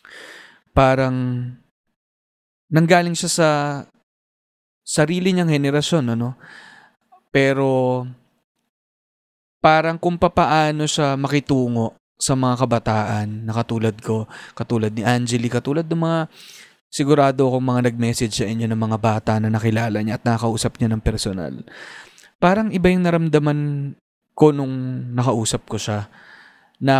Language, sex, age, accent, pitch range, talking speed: Filipino, male, 20-39, native, 115-150 Hz, 120 wpm